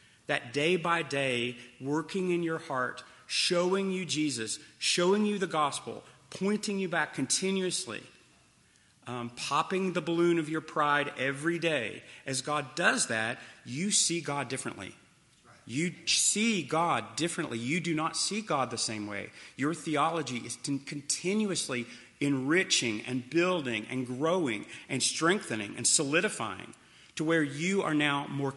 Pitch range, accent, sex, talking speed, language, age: 130-170 Hz, American, male, 140 wpm, English, 30-49